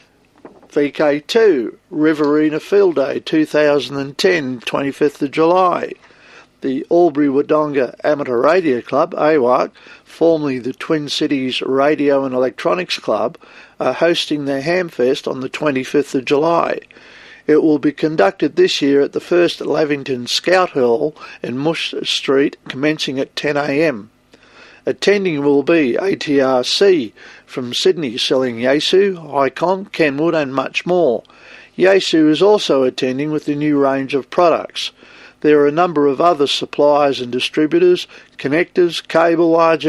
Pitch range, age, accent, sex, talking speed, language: 140-170 Hz, 50-69, Australian, male, 125 wpm, English